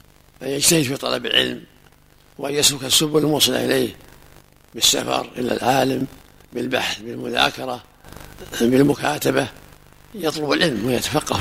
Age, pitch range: 60-79, 135-155 Hz